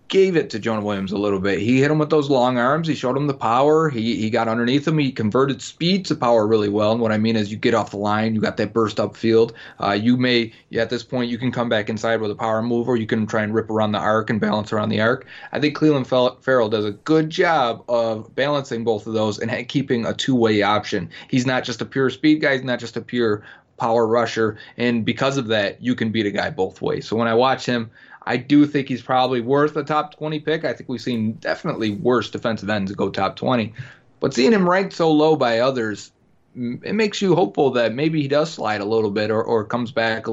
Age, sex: 30-49, male